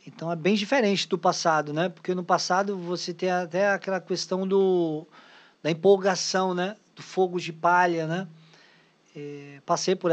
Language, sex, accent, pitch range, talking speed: Portuguese, male, Brazilian, 155-180 Hz, 160 wpm